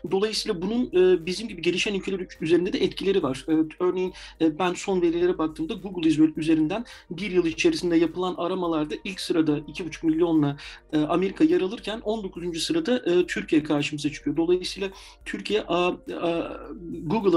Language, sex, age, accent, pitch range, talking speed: Turkish, male, 40-59, native, 170-265 Hz, 135 wpm